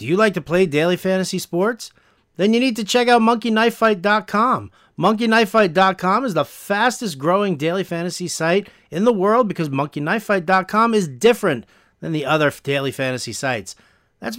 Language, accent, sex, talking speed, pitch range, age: English, American, male, 155 wpm, 155-205 Hz, 40-59